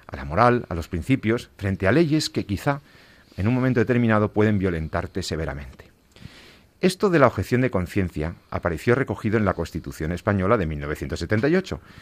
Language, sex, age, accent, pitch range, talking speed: Spanish, male, 50-69, Spanish, 90-120 Hz, 160 wpm